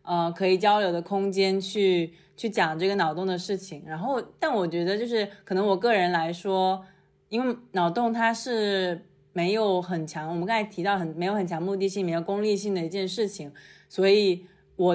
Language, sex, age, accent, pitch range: Chinese, female, 20-39, native, 175-220 Hz